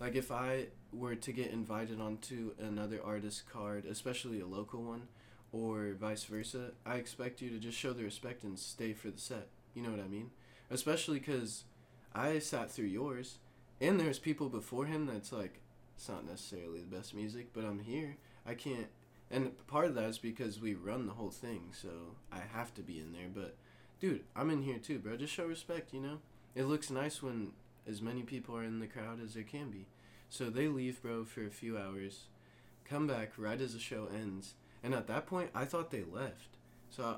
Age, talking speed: 20-39, 210 wpm